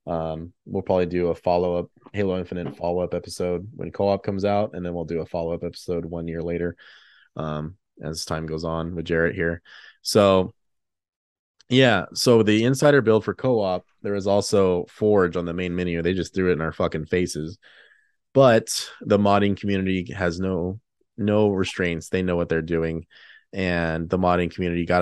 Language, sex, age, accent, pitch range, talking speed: English, male, 20-39, American, 85-100 Hz, 175 wpm